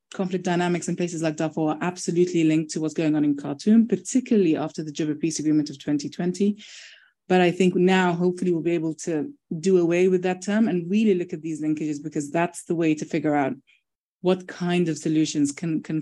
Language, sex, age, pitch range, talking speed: English, female, 20-39, 155-180 Hz, 210 wpm